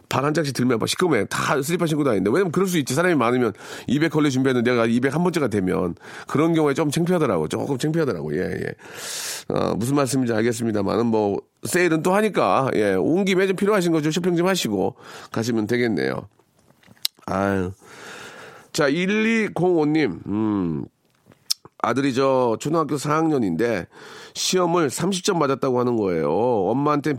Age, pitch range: 40-59, 115-160 Hz